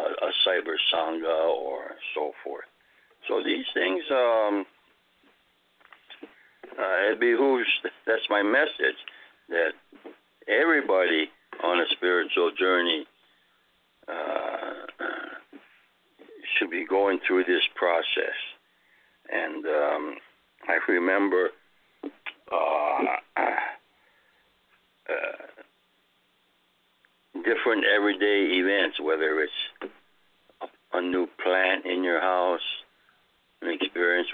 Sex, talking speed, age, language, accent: male, 80 wpm, 60-79, English, American